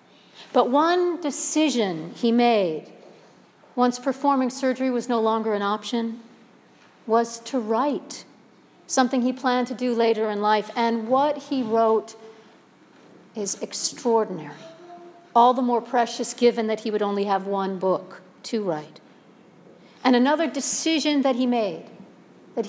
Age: 50-69